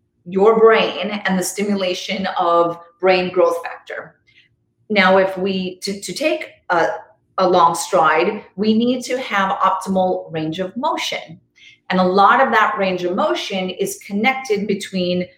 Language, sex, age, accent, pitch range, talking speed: English, female, 30-49, American, 180-225 Hz, 150 wpm